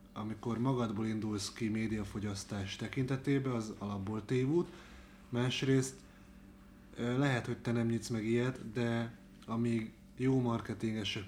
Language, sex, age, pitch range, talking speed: Hungarian, male, 30-49, 100-120 Hz, 110 wpm